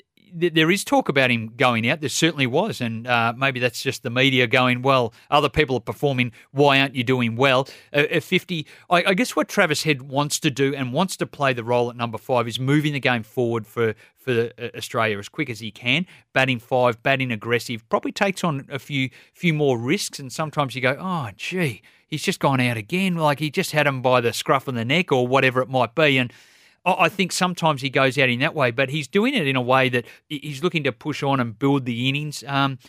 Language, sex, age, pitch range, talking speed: English, male, 40-59, 120-150 Hz, 230 wpm